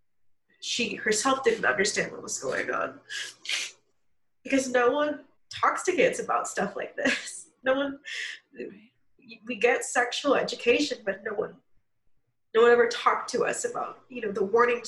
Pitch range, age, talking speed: 205-310 Hz, 20-39, 155 wpm